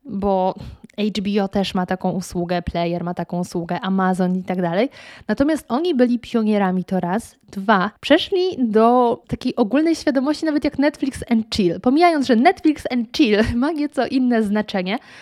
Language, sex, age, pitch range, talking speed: Polish, female, 20-39, 190-245 Hz, 160 wpm